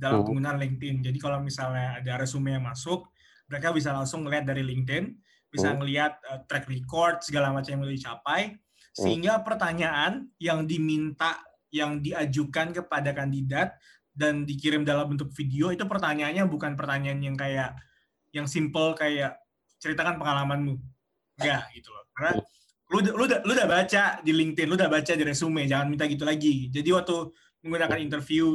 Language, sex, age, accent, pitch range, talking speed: Indonesian, male, 20-39, native, 140-165 Hz, 155 wpm